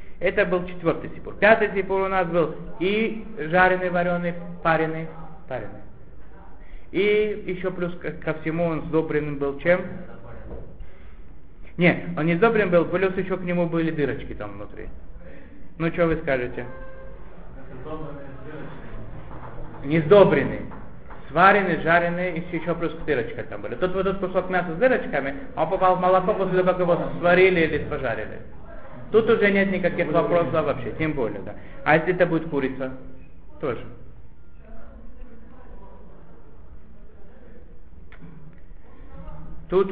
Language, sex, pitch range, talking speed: Russian, male, 125-180 Hz, 125 wpm